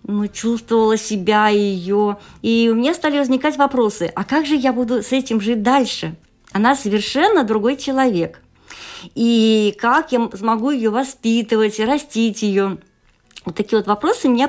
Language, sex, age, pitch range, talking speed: Russian, female, 40-59, 195-245 Hz, 155 wpm